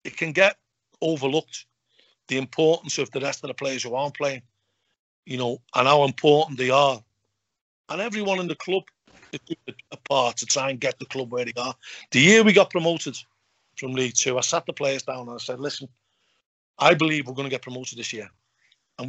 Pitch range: 120-150 Hz